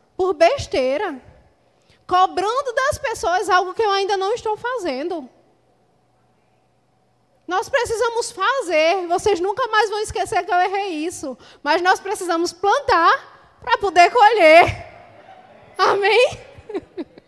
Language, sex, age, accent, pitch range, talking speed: Portuguese, female, 20-39, Brazilian, 290-390 Hz, 110 wpm